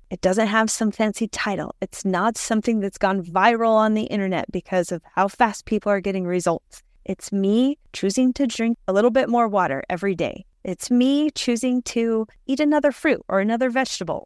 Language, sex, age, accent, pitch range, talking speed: English, female, 30-49, American, 180-245 Hz, 190 wpm